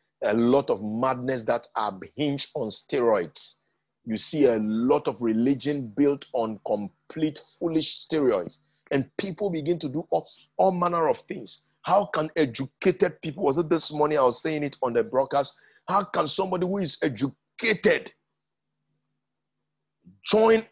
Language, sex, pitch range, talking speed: English, male, 135-180 Hz, 150 wpm